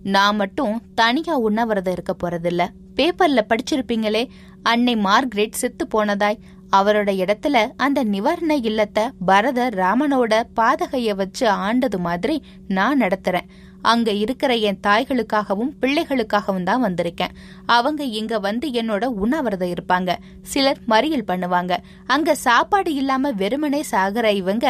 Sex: female